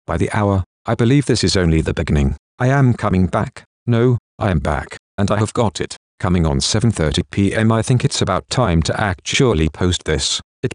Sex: male